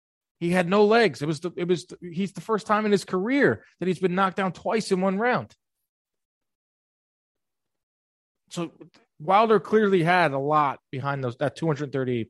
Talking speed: 175 wpm